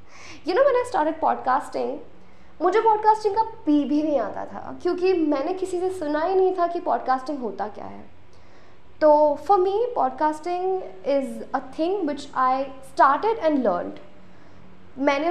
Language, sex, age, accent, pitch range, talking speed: Hindi, female, 20-39, native, 245-330 Hz, 155 wpm